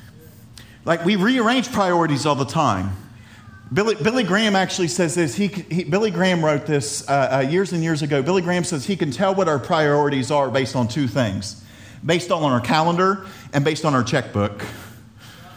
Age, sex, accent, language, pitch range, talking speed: 40-59, male, American, English, 110-160 Hz, 190 wpm